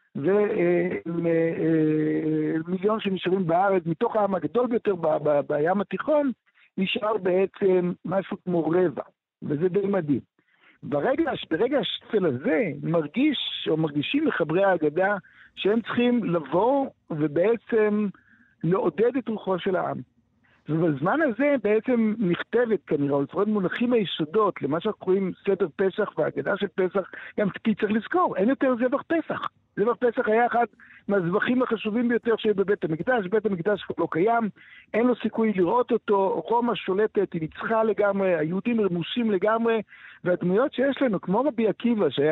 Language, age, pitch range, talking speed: Hebrew, 60-79, 180-225 Hz, 140 wpm